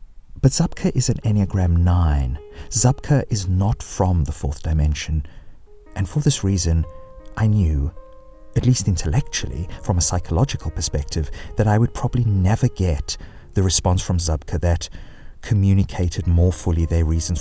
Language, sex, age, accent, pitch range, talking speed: English, male, 40-59, British, 80-105 Hz, 145 wpm